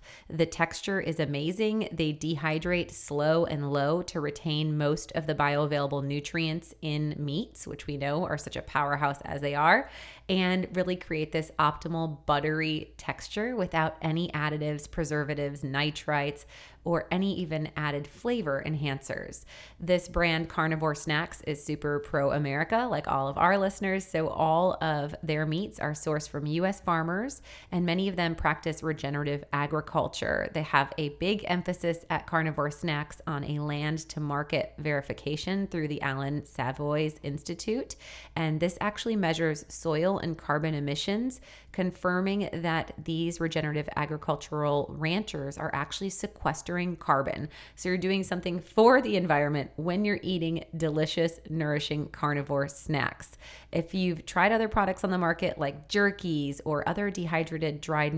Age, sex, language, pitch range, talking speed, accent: 20-39, female, English, 150-180 Hz, 140 wpm, American